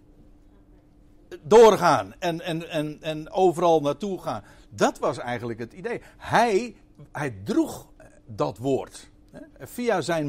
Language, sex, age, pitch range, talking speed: Dutch, male, 60-79, 110-170 Hz, 105 wpm